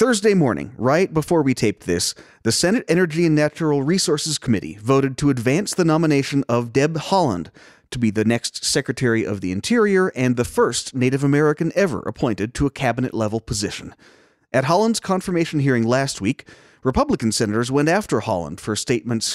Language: English